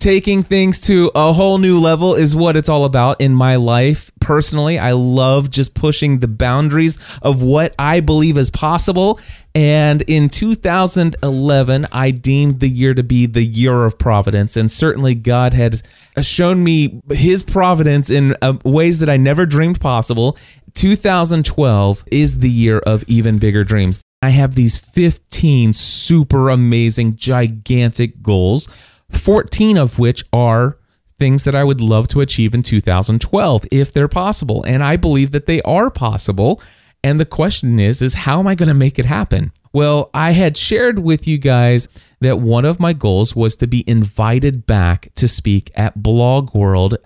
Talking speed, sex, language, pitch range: 165 wpm, male, English, 115-150 Hz